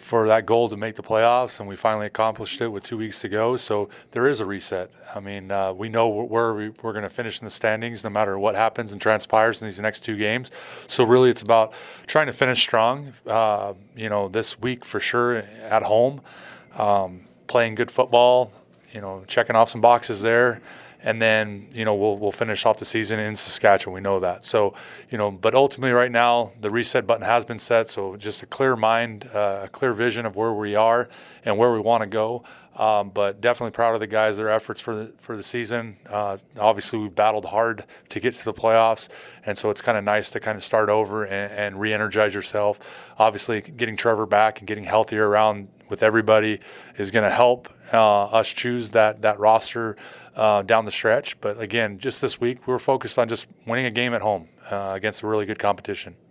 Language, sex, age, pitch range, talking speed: English, male, 30-49, 105-115 Hz, 220 wpm